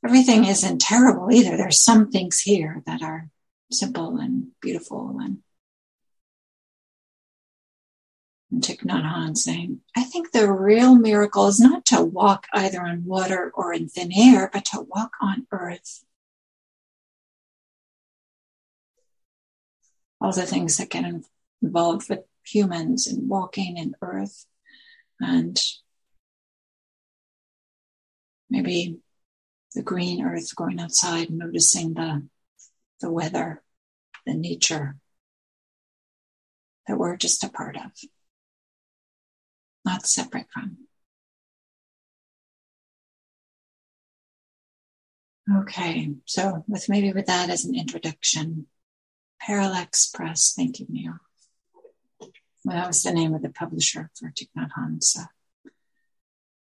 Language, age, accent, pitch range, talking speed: English, 60-79, American, 170-250 Hz, 105 wpm